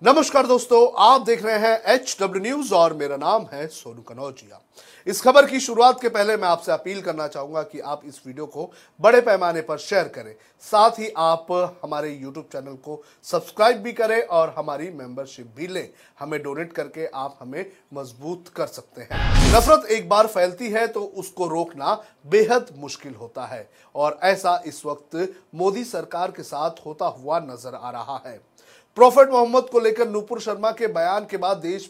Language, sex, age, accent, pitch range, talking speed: Hindi, male, 40-59, native, 150-220 Hz, 180 wpm